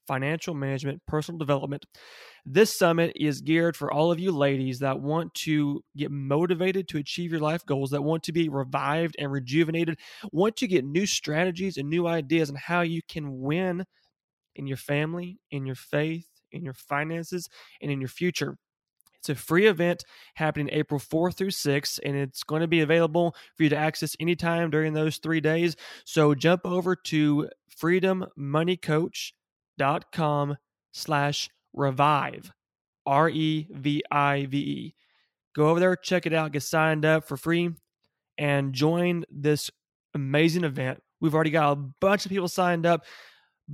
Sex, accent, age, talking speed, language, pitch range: male, American, 20-39, 160 wpm, English, 145-170 Hz